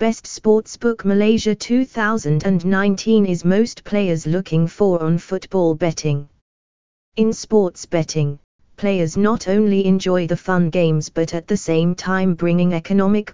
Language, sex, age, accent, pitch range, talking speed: English, female, 20-39, British, 155-200 Hz, 130 wpm